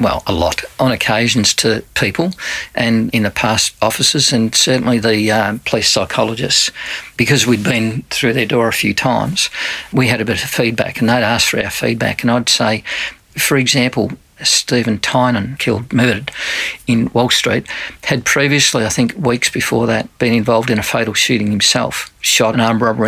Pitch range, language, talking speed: 110-125 Hz, English, 180 wpm